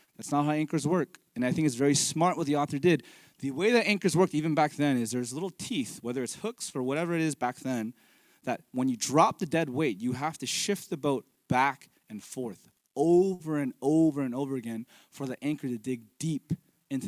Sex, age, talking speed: male, 20-39, 230 wpm